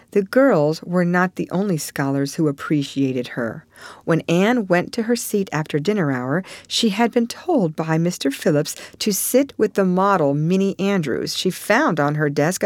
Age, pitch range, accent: 50-69, 150-220 Hz, American